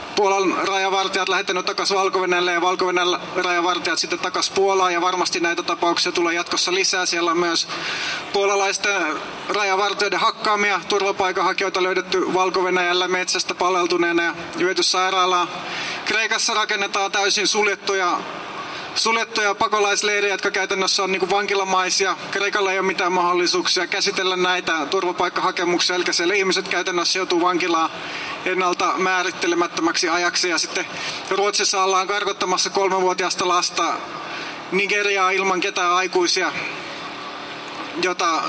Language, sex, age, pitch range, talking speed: Finnish, male, 30-49, 180-205 Hz, 110 wpm